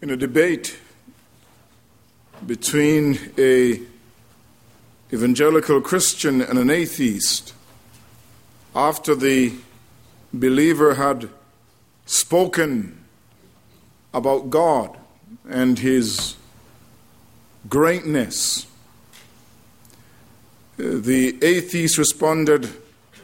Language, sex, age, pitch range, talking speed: English, male, 50-69, 120-170 Hz, 60 wpm